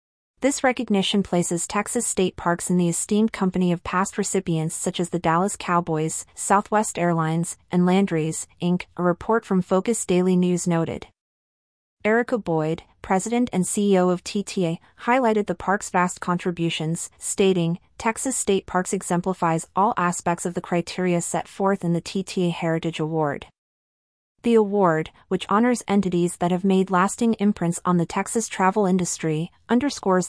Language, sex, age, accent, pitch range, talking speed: English, female, 30-49, American, 170-200 Hz, 150 wpm